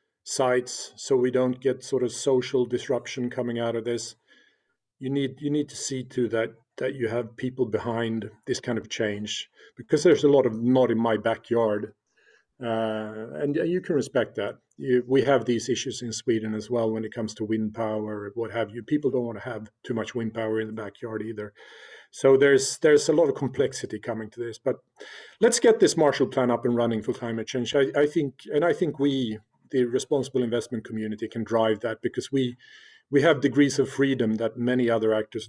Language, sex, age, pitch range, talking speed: English, male, 40-59, 110-130 Hz, 210 wpm